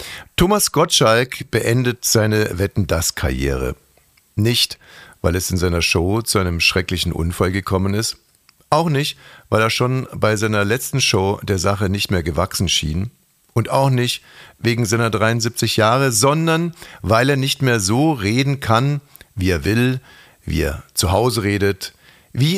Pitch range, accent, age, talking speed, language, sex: 95-125 Hz, German, 60-79, 155 wpm, German, male